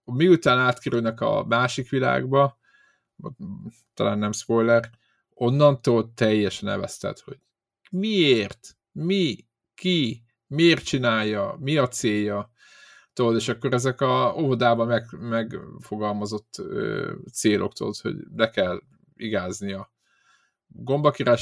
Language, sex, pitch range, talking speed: Hungarian, male, 110-145 Hz, 95 wpm